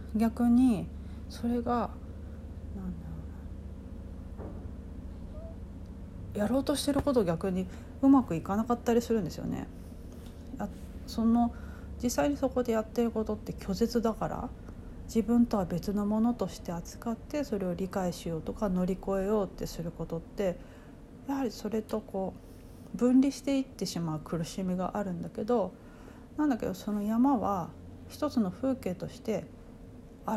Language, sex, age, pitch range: Japanese, female, 40-59, 175-235 Hz